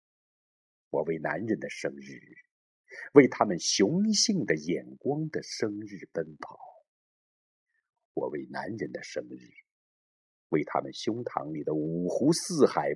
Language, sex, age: Chinese, male, 50-69